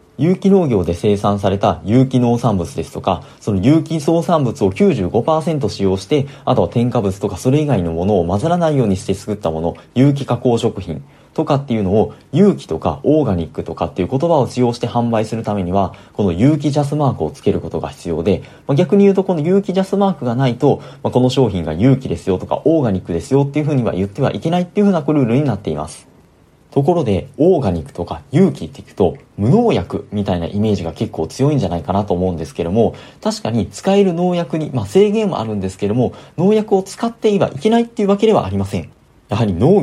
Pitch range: 100-160 Hz